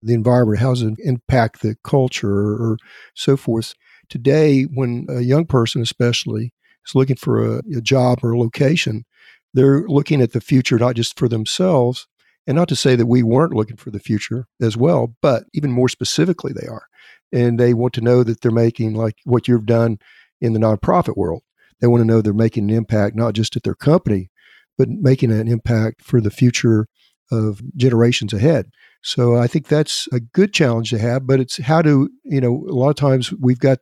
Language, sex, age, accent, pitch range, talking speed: English, male, 50-69, American, 115-135 Hz, 200 wpm